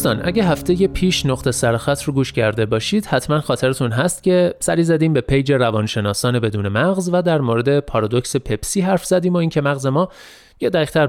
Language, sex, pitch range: Persian, male, 120-175 Hz